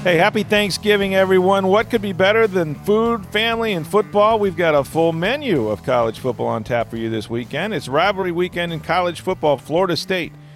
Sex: male